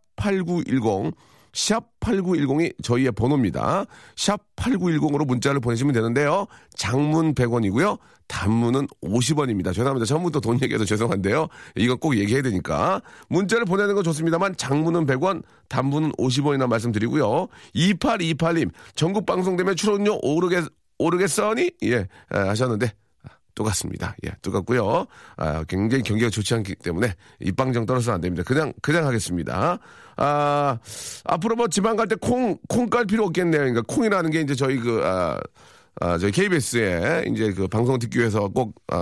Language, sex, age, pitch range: Korean, male, 40-59, 115-175 Hz